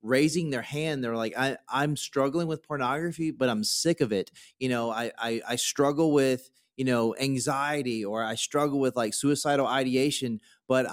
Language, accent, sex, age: English, American, male, 30-49